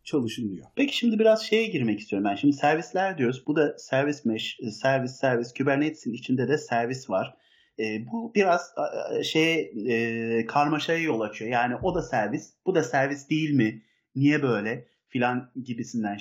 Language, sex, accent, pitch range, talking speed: Turkish, male, native, 115-155 Hz, 165 wpm